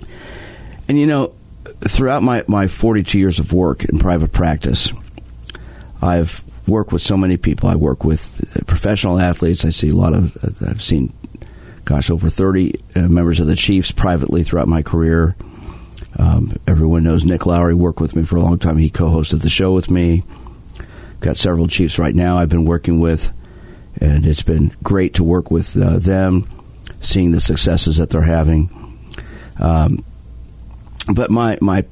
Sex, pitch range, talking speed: male, 80-105 Hz, 165 wpm